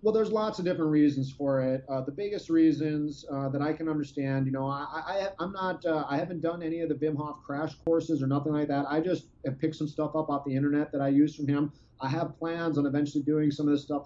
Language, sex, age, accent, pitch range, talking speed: English, male, 30-49, American, 135-165 Hz, 265 wpm